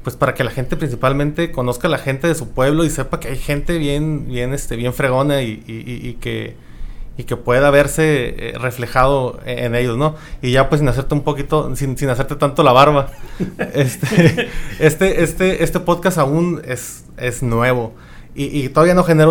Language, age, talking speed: Spanish, 30-49, 195 wpm